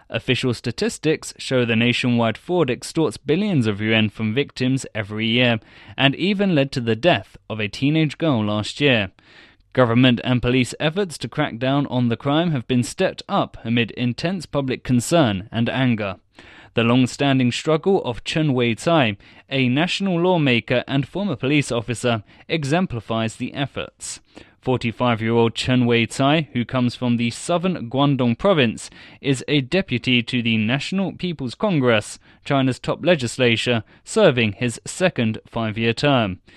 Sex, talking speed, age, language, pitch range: male, 145 wpm, 20-39, English, 115-150 Hz